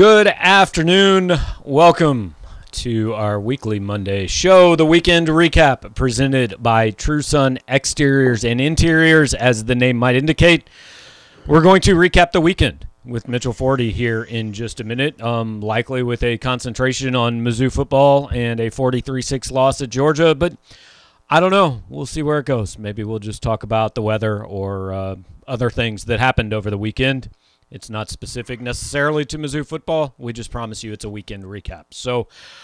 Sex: male